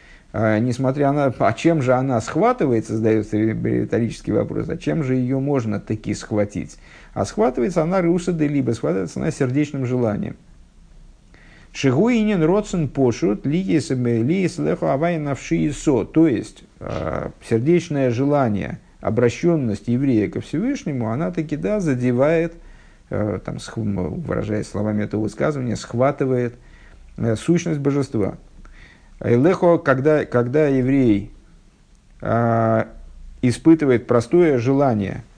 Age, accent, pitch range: 50-69, native, 110-140 Hz